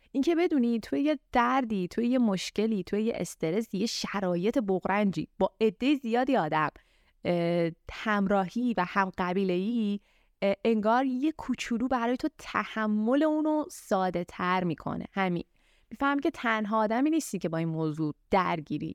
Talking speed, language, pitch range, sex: 135 wpm, Persian, 180-245 Hz, female